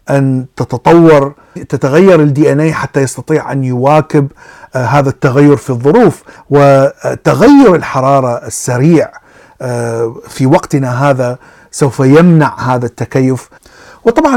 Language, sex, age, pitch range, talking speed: Arabic, male, 50-69, 125-155 Hz, 100 wpm